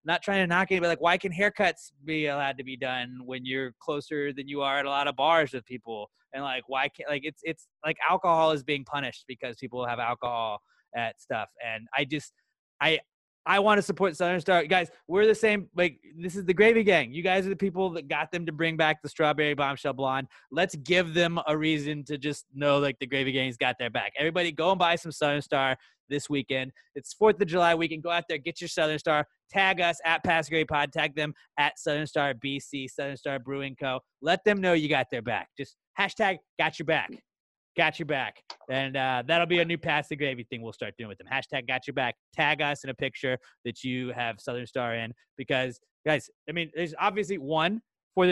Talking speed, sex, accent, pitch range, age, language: 230 wpm, male, American, 135-170 Hz, 20-39, English